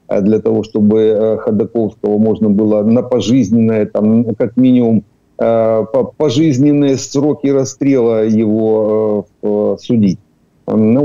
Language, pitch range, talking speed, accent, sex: Ukrainian, 105-125 Hz, 80 wpm, native, male